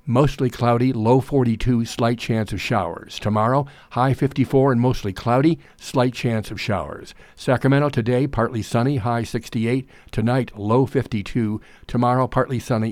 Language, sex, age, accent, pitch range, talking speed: English, male, 60-79, American, 110-135 Hz, 140 wpm